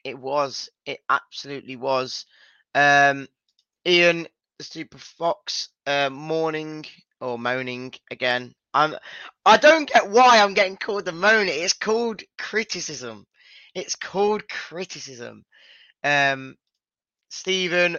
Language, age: English, 20-39